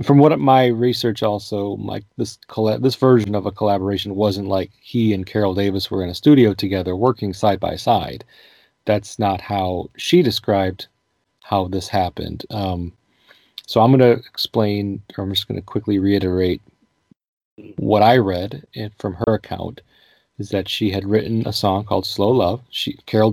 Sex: male